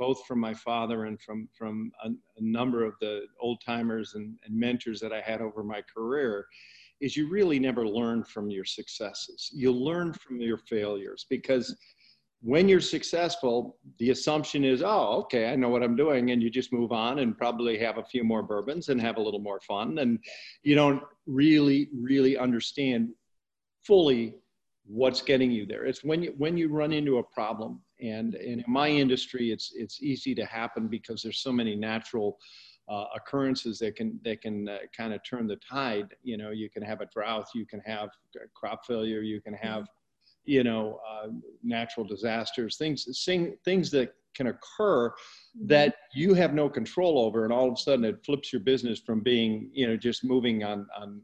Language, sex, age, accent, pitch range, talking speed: English, male, 50-69, American, 110-135 Hz, 190 wpm